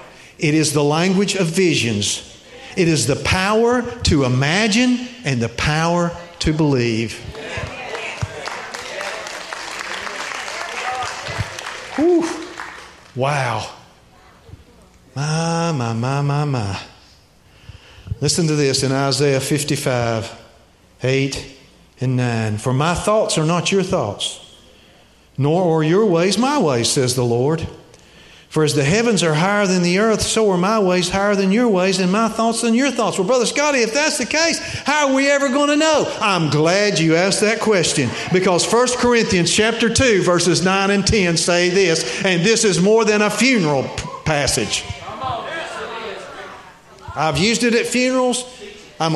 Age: 50-69